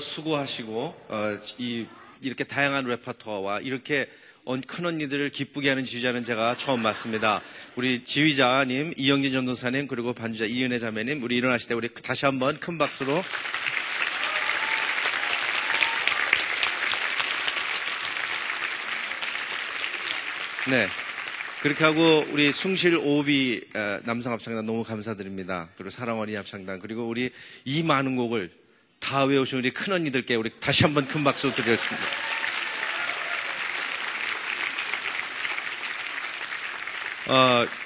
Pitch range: 110-140 Hz